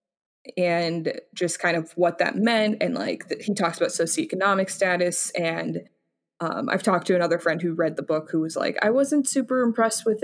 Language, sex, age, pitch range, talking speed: English, female, 20-39, 170-205 Hz, 195 wpm